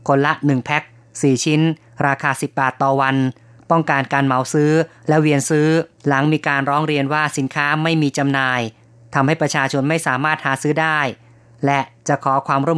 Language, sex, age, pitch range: Thai, female, 20-39, 135-155 Hz